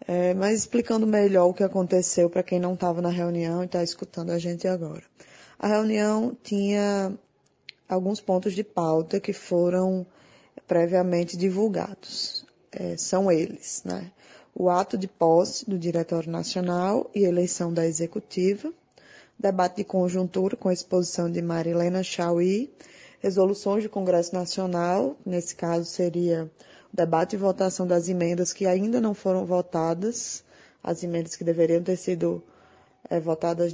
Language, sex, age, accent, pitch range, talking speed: Portuguese, female, 20-39, Brazilian, 175-200 Hz, 140 wpm